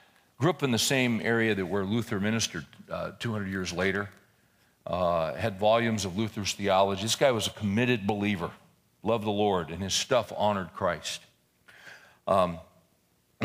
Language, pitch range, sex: English, 100-135 Hz, male